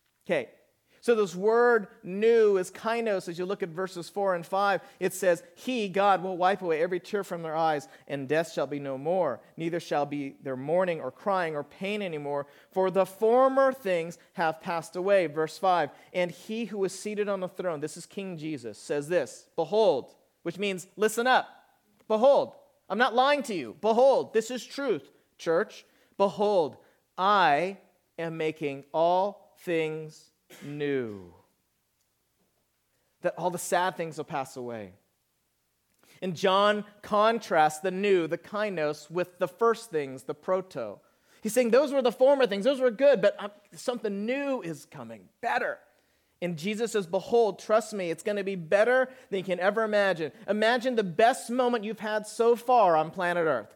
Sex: male